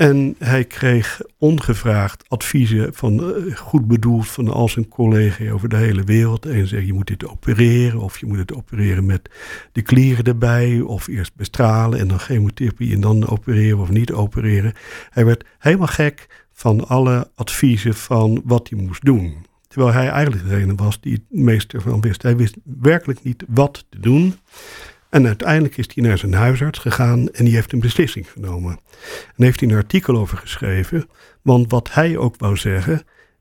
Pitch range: 105-130 Hz